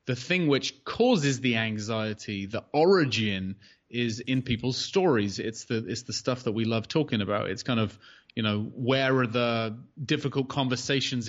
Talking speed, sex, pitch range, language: 170 wpm, male, 110-135 Hz, English